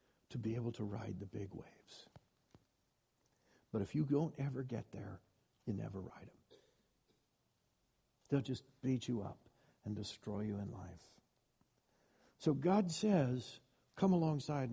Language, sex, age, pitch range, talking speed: English, male, 60-79, 120-170 Hz, 140 wpm